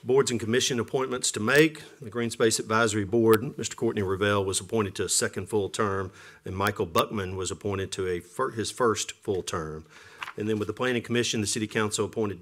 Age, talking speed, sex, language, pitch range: 40-59, 200 wpm, male, English, 95-115 Hz